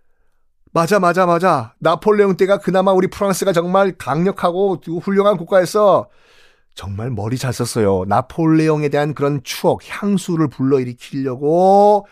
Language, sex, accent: Korean, male, native